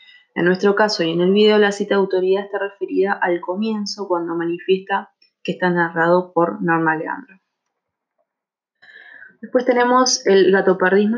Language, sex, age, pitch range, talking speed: Spanish, female, 20-39, 175-210 Hz, 145 wpm